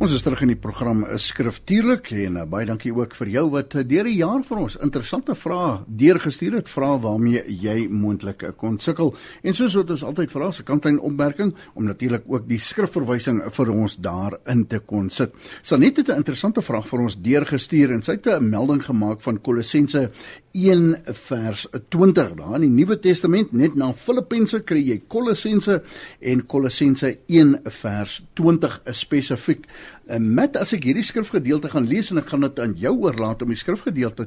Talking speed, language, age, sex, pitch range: 180 wpm, English, 60-79, male, 120-175 Hz